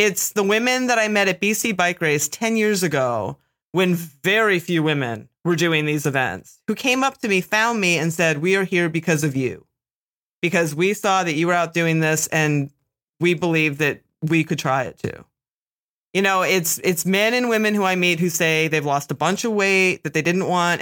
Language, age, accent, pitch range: English, 30-49, American, 160-215 Hz